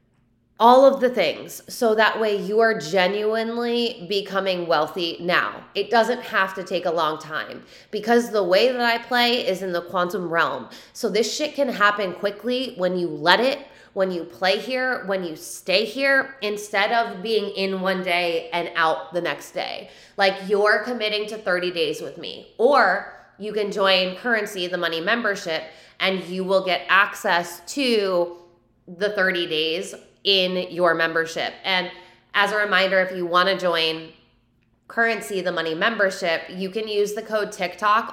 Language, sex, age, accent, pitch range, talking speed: English, female, 20-39, American, 180-225 Hz, 170 wpm